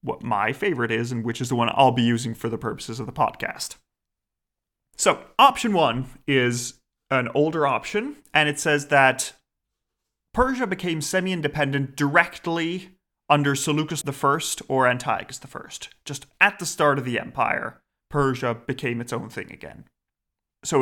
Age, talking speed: 30-49, 155 wpm